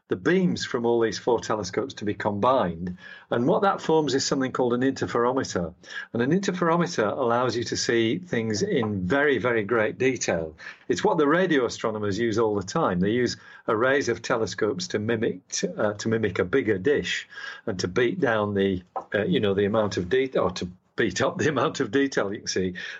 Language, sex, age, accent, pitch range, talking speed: English, male, 50-69, British, 105-135 Hz, 205 wpm